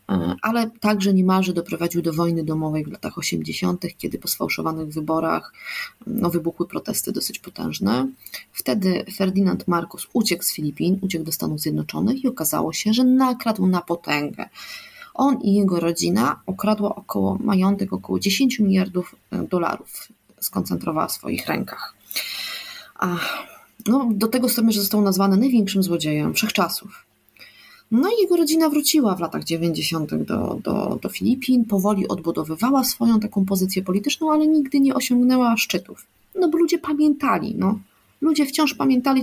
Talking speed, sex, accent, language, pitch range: 140 wpm, female, native, Polish, 175-260 Hz